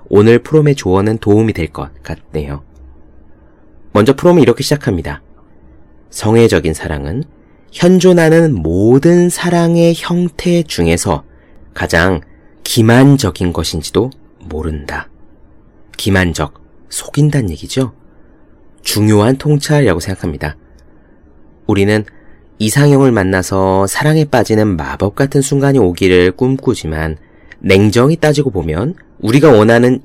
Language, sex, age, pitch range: Korean, male, 30-49, 85-135 Hz